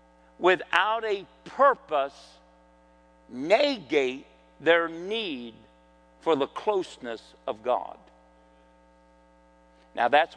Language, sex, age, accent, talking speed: English, male, 50-69, American, 75 wpm